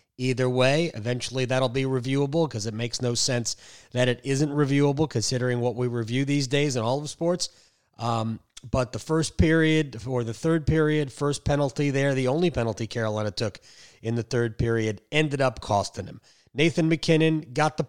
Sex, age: male, 30-49